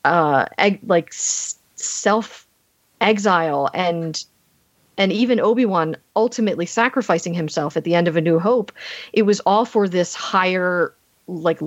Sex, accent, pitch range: female, American, 170-215 Hz